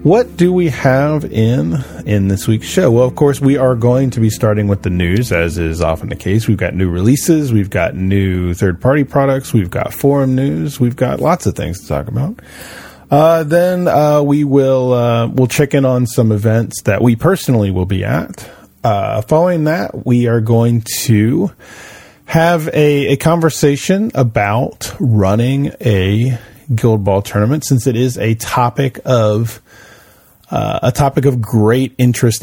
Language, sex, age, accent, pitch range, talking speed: English, male, 30-49, American, 100-130 Hz, 175 wpm